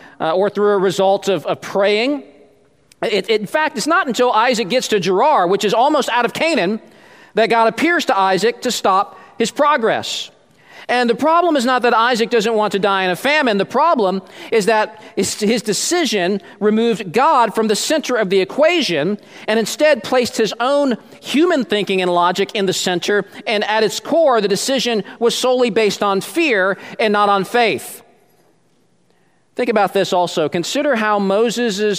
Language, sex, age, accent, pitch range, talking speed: English, male, 40-59, American, 200-255 Hz, 175 wpm